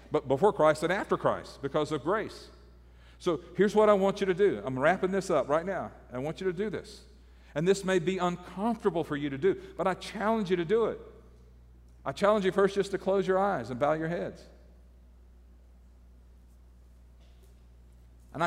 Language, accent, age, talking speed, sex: English, American, 50-69, 190 wpm, male